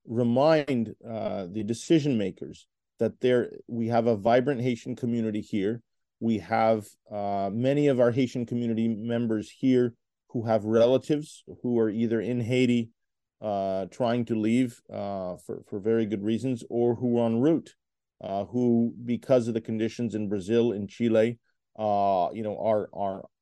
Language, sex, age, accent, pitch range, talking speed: English, male, 40-59, American, 110-120 Hz, 160 wpm